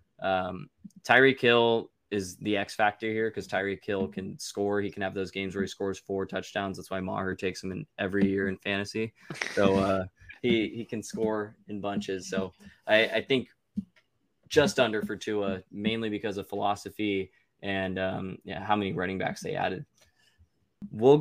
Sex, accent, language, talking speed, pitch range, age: male, American, English, 180 wpm, 95-110 Hz, 20-39